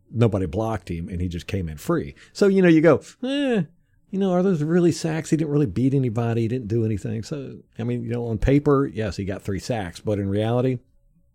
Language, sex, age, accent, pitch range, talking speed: English, male, 50-69, American, 95-130 Hz, 240 wpm